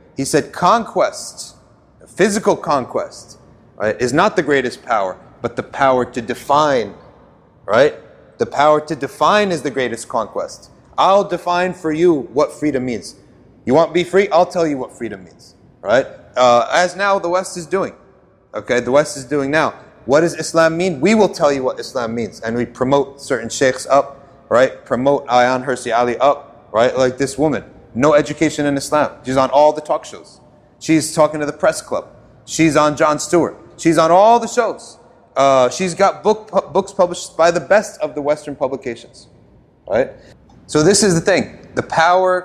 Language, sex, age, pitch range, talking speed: English, male, 30-49, 135-180 Hz, 180 wpm